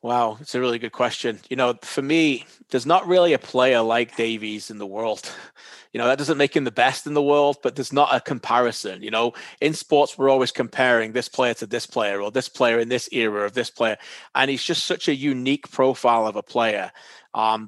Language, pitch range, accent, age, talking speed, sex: English, 115-130 Hz, British, 30-49, 230 wpm, male